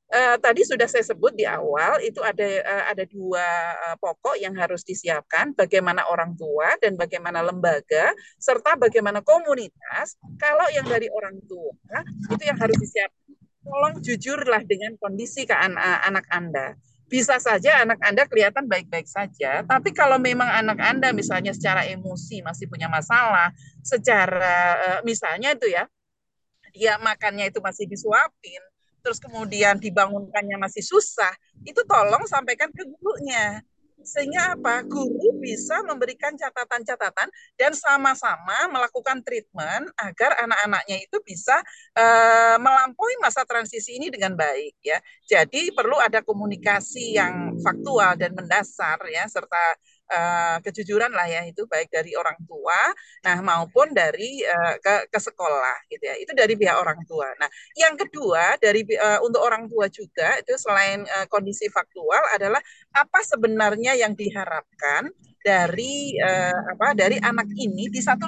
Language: Indonesian